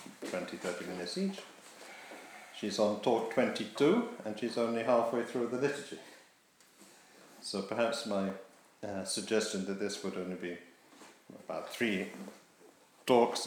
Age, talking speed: 50-69, 115 wpm